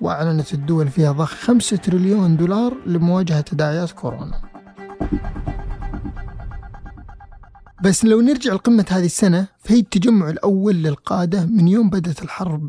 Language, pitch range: Arabic, 165-225 Hz